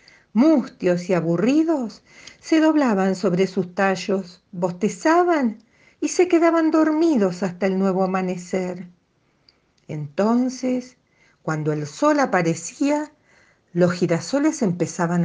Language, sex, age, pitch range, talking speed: Spanish, female, 50-69, 170-230 Hz, 100 wpm